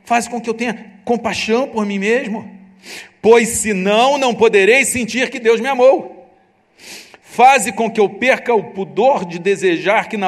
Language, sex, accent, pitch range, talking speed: Portuguese, male, Brazilian, 175-215 Hz, 170 wpm